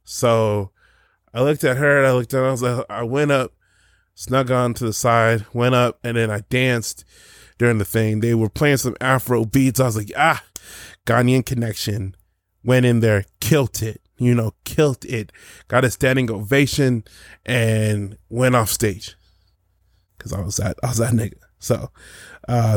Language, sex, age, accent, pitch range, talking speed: English, male, 20-39, American, 105-125 Hz, 185 wpm